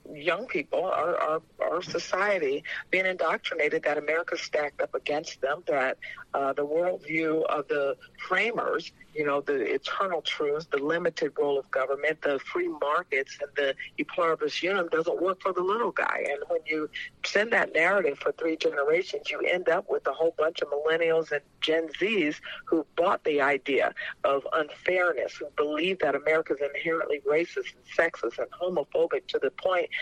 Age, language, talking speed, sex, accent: 60-79, English, 170 wpm, female, American